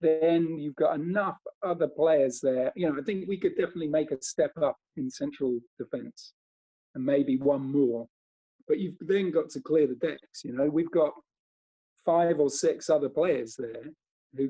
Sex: male